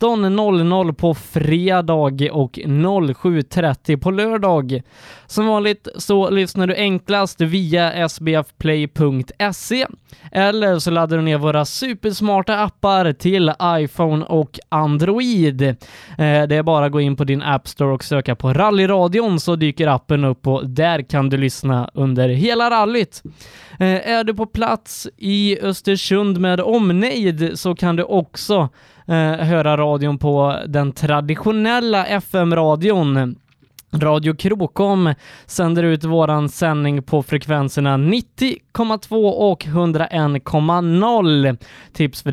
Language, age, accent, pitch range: Swedish, 20-39, native, 145-190 Hz